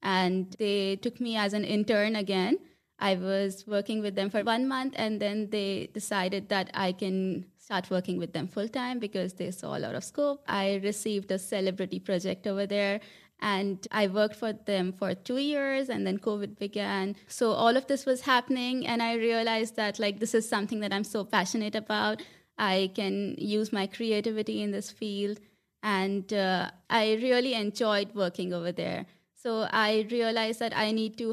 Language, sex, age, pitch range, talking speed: Czech, female, 20-39, 195-225 Hz, 185 wpm